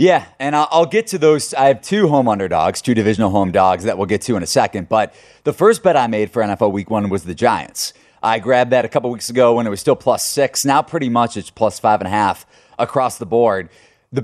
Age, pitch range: 30-49, 110-135 Hz